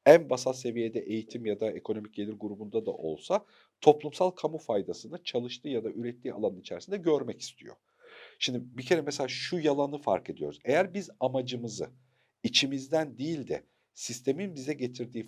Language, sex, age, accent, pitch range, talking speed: Turkish, male, 50-69, native, 110-145 Hz, 155 wpm